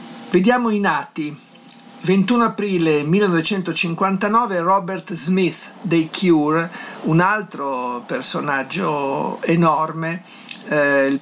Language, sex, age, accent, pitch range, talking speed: Italian, male, 50-69, native, 145-185 Hz, 85 wpm